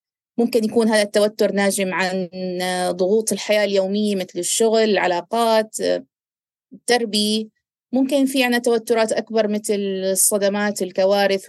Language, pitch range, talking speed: Arabic, 190-225 Hz, 110 wpm